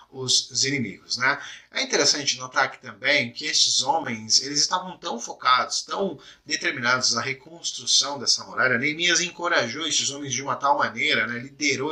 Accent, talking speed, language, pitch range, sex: Brazilian, 155 wpm, Portuguese, 125-165 Hz, male